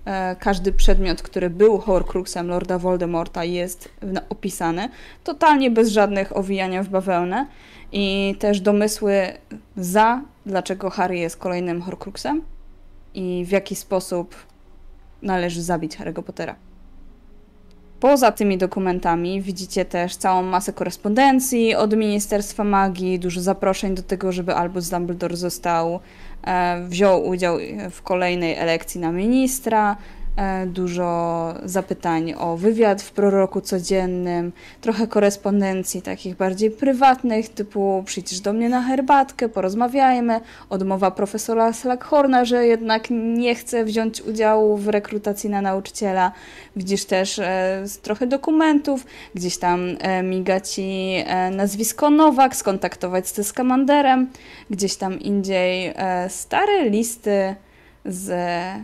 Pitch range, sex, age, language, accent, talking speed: 180-220 Hz, female, 20-39, Polish, native, 115 wpm